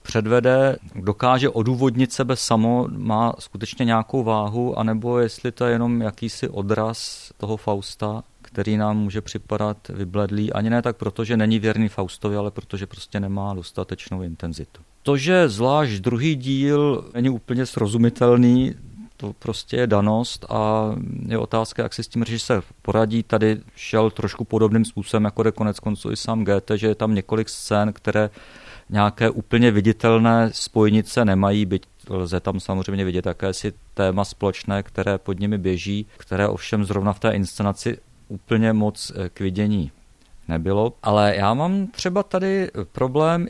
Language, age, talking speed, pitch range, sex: Czech, 40-59, 150 wpm, 105-125 Hz, male